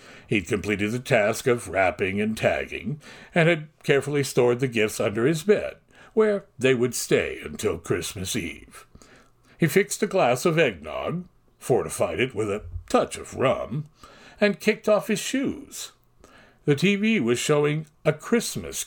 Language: English